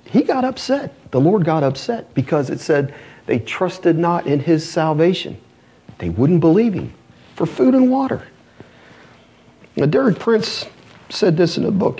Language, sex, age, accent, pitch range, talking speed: English, male, 40-59, American, 110-165 Hz, 160 wpm